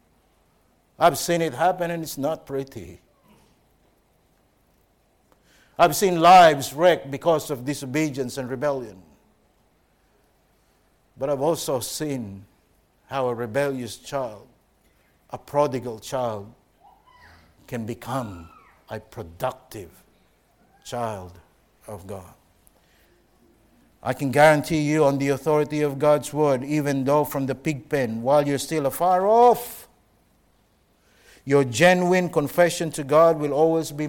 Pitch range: 115-155 Hz